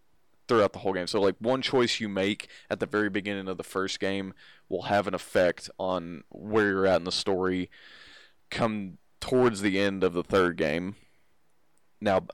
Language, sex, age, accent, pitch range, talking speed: English, male, 20-39, American, 90-105 Hz, 185 wpm